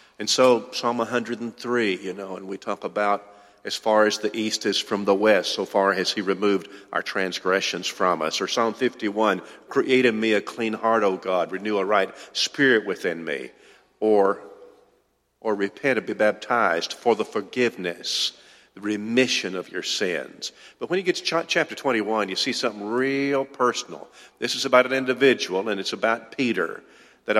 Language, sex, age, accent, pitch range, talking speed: English, male, 50-69, American, 105-135 Hz, 180 wpm